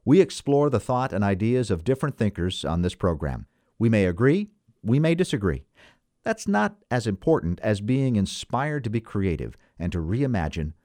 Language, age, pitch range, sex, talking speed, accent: English, 50-69, 100-140 Hz, male, 170 wpm, American